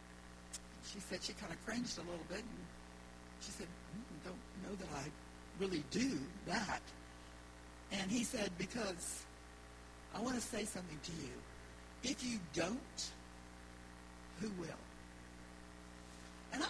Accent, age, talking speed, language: American, 60-79, 135 wpm, English